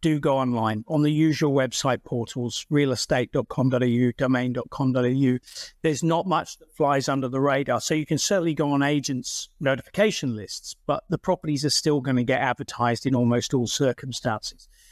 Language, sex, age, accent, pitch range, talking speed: English, male, 50-69, British, 125-155 Hz, 160 wpm